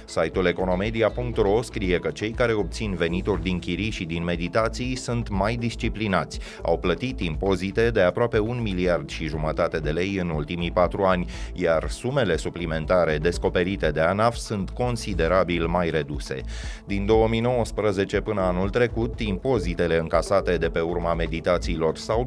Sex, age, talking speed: male, 30-49, 145 wpm